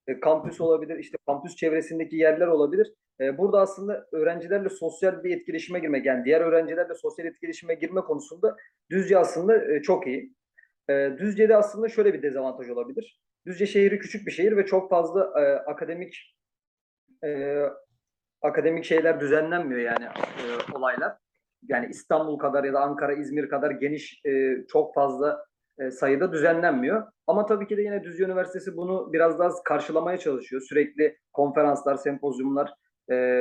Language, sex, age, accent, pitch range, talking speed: Turkish, male, 40-59, native, 145-195 Hz, 145 wpm